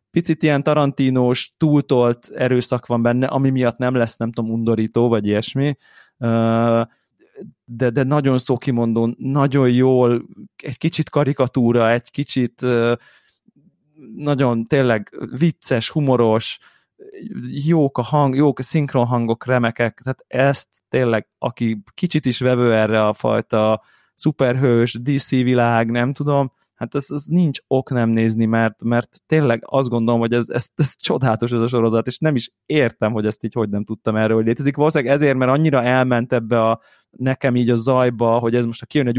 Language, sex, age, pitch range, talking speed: Hungarian, male, 20-39, 115-135 Hz, 155 wpm